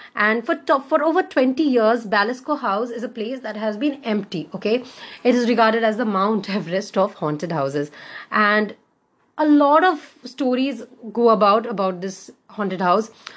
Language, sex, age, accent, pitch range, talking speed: Hindi, female, 30-49, native, 190-250 Hz, 170 wpm